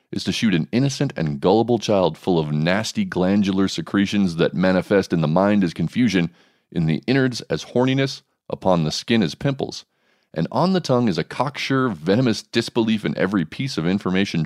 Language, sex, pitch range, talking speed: English, male, 85-115 Hz, 185 wpm